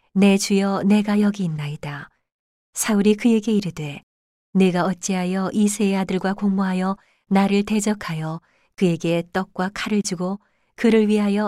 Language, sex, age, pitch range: Korean, female, 40-59, 170-205 Hz